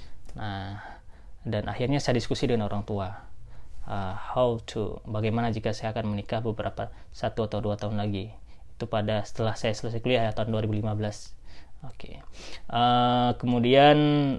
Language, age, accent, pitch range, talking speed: Indonesian, 20-39, native, 105-130 Hz, 140 wpm